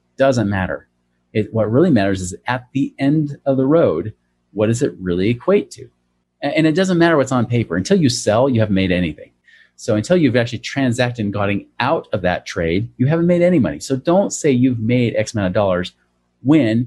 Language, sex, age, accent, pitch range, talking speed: English, male, 30-49, American, 95-140 Hz, 210 wpm